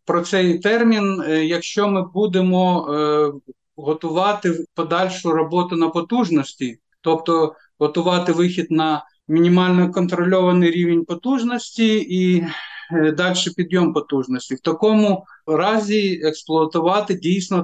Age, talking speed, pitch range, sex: 50-69, 100 wpm, 150-180 Hz, male